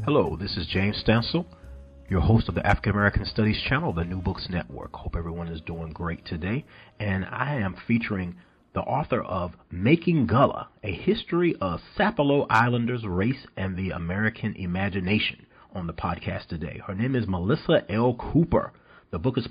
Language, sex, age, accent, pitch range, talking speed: English, male, 40-59, American, 90-120 Hz, 165 wpm